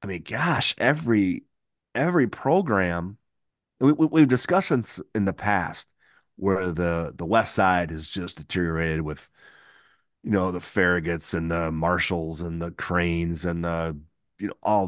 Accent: American